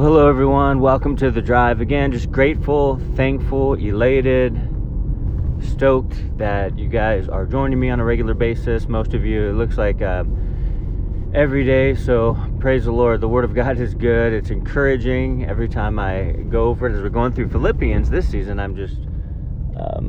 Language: English